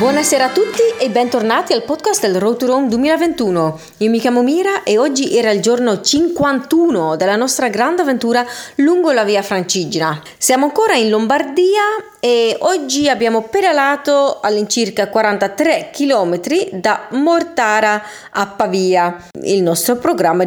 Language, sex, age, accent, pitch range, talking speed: Italian, female, 30-49, native, 185-280 Hz, 140 wpm